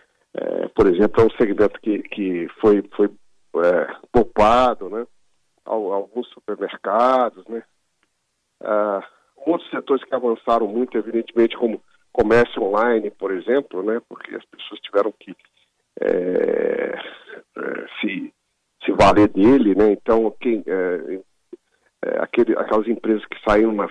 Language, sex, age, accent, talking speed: Portuguese, male, 50-69, Brazilian, 110 wpm